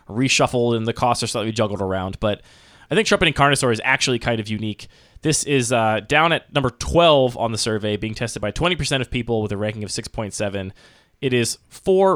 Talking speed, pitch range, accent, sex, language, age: 205 wpm, 110-130 Hz, American, male, English, 20-39